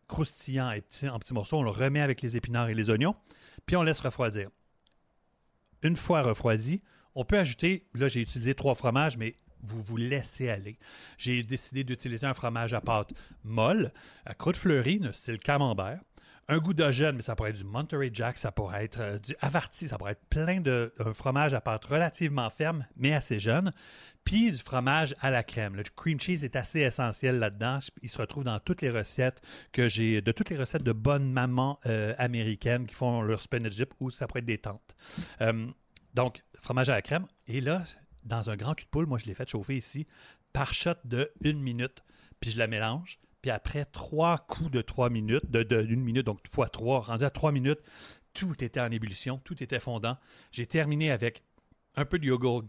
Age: 30-49